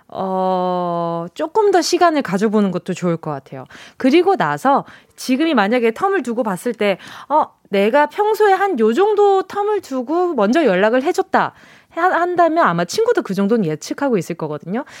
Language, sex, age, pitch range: Korean, female, 20-39, 200-335 Hz